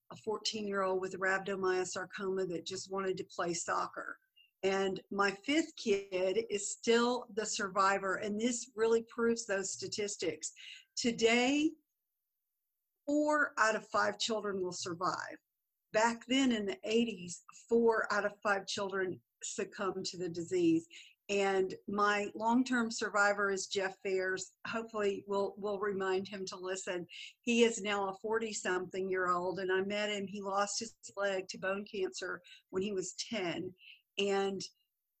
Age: 50-69